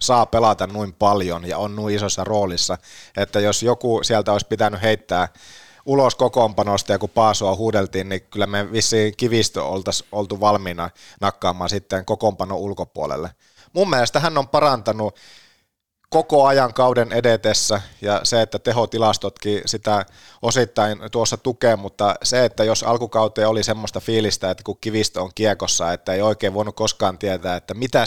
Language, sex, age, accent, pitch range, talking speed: Finnish, male, 30-49, native, 100-125 Hz, 155 wpm